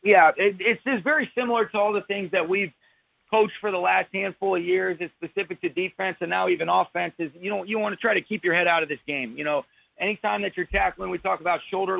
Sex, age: male, 40-59